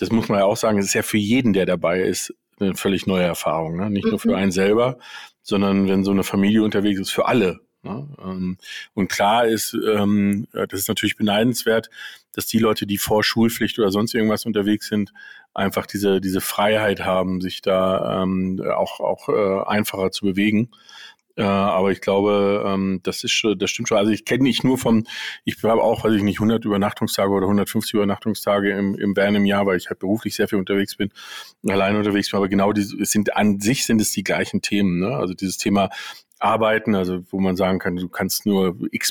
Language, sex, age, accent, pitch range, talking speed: German, male, 40-59, German, 95-110 Hz, 200 wpm